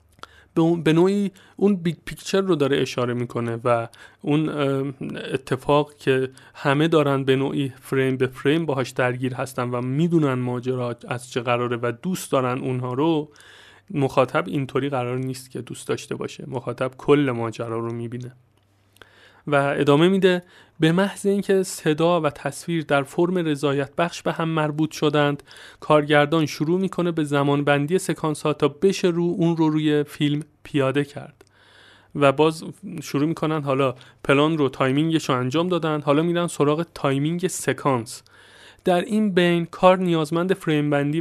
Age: 30-49